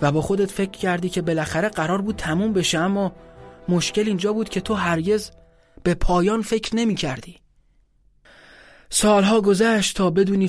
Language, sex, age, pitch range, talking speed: Persian, male, 30-49, 155-190 Hz, 155 wpm